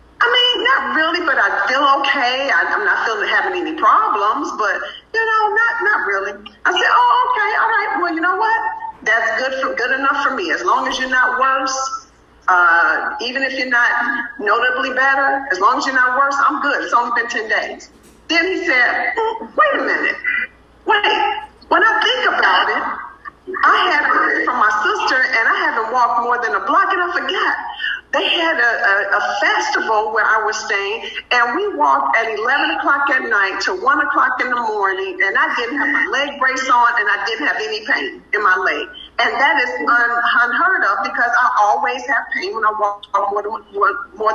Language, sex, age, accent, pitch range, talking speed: English, female, 50-69, American, 245-400 Hz, 200 wpm